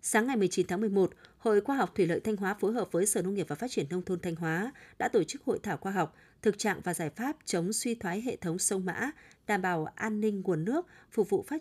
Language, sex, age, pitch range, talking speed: Vietnamese, female, 20-39, 180-230 Hz, 275 wpm